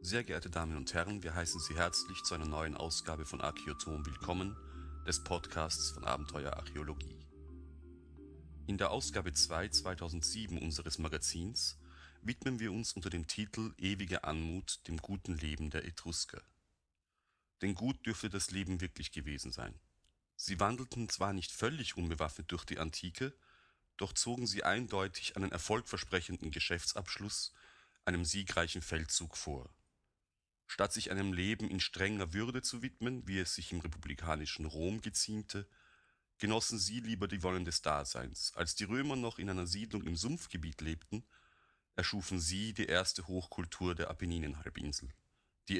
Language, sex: German, male